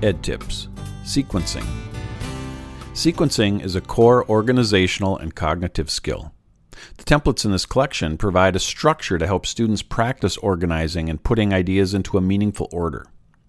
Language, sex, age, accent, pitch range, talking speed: English, male, 50-69, American, 85-110 Hz, 140 wpm